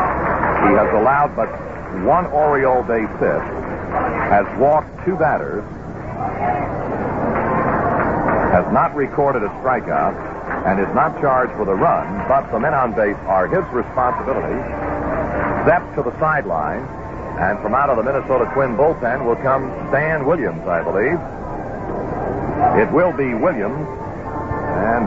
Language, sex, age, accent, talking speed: English, male, 60-79, American, 130 wpm